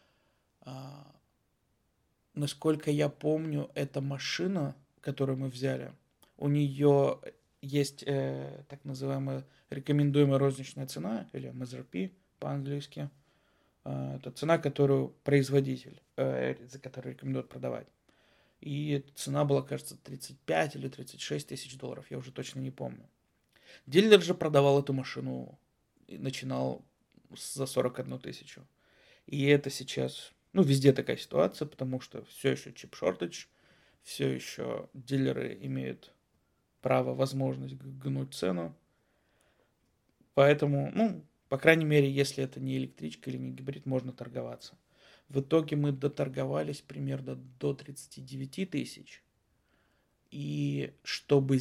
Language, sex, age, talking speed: Russian, male, 20-39, 115 wpm